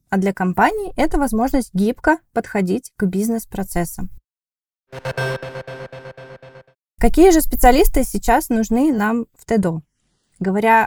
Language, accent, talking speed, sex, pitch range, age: Russian, native, 105 wpm, female, 195-255 Hz, 20-39